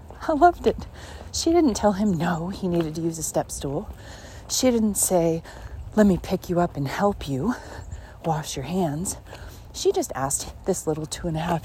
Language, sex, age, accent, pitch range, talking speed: English, female, 40-59, American, 115-185 Hz, 195 wpm